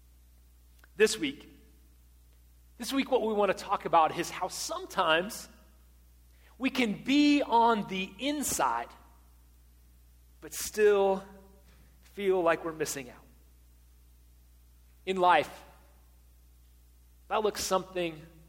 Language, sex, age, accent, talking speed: English, male, 30-49, American, 100 wpm